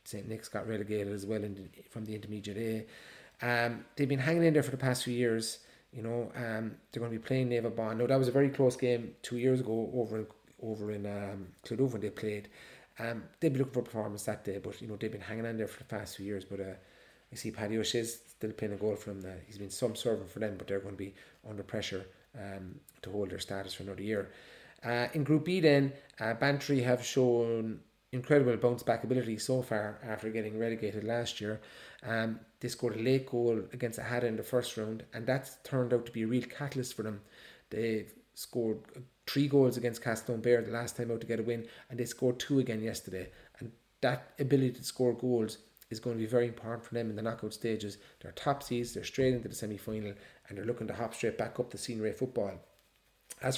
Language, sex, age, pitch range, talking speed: English, male, 30-49, 110-125 Hz, 235 wpm